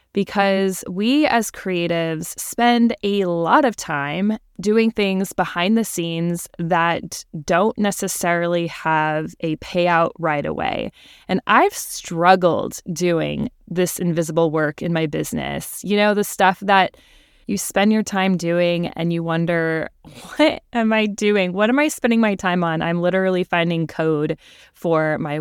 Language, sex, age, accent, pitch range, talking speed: English, female, 20-39, American, 165-200 Hz, 145 wpm